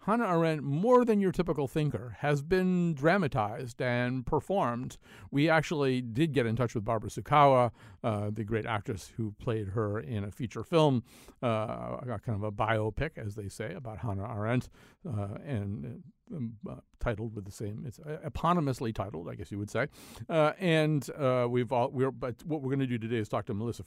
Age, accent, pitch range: 50-69, American, 110-155 Hz